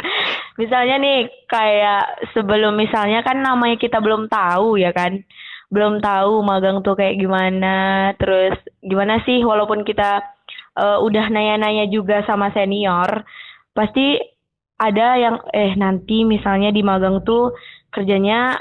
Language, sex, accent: Indonesian, female, native